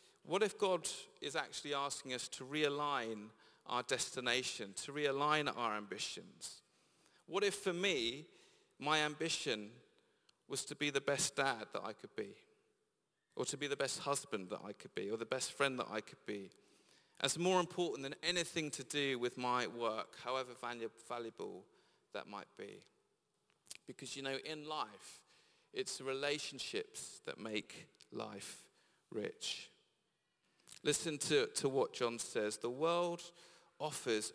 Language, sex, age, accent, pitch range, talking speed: English, male, 40-59, British, 130-165 Hz, 145 wpm